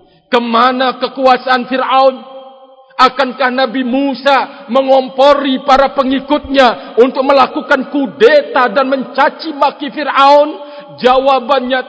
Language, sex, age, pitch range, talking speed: Indonesian, male, 50-69, 180-275 Hz, 85 wpm